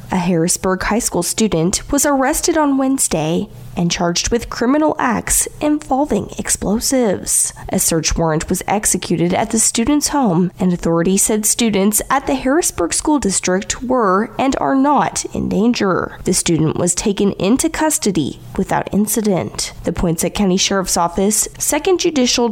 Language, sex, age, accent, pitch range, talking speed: English, female, 20-39, American, 180-265 Hz, 150 wpm